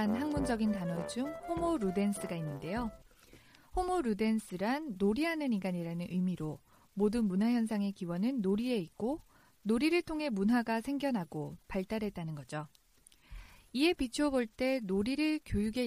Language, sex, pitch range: Korean, female, 180-265 Hz